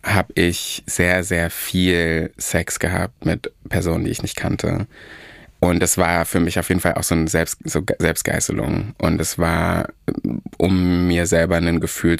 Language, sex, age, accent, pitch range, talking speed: German, male, 20-39, German, 80-90 Hz, 170 wpm